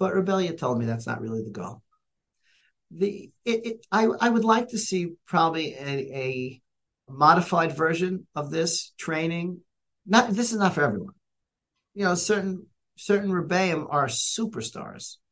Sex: male